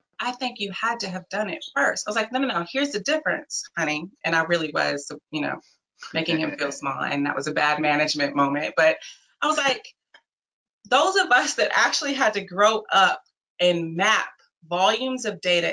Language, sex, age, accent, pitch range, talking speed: English, female, 30-49, American, 155-210 Hz, 205 wpm